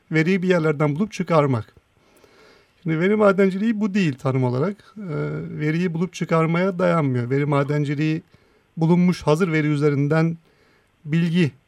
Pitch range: 140-175 Hz